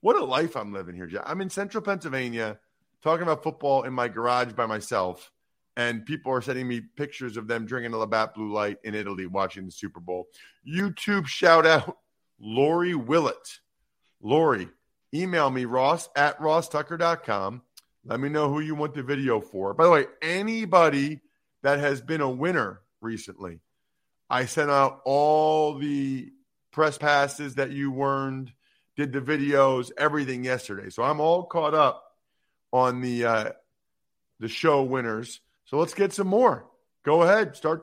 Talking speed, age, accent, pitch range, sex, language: 160 wpm, 40-59, American, 125-170 Hz, male, English